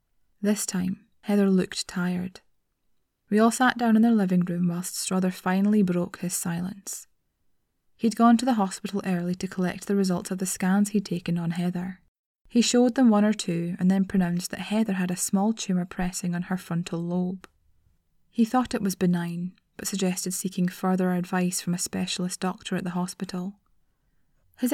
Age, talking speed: 20-39, 180 wpm